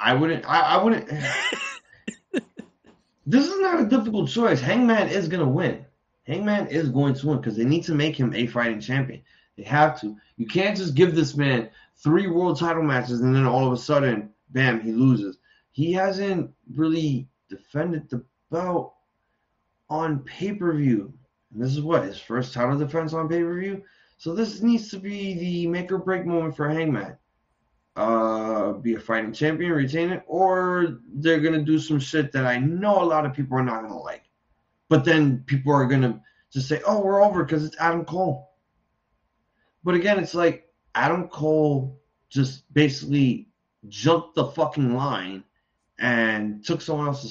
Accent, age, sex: American, 20-39, male